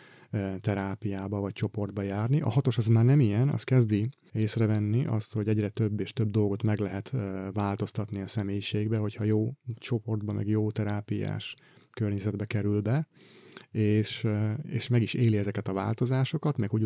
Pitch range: 105-125 Hz